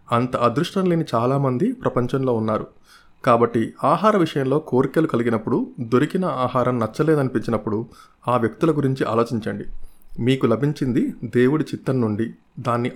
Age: 30-49